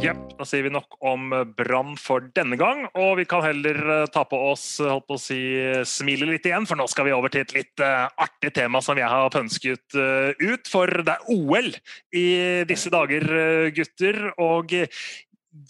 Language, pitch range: English, 130-170 Hz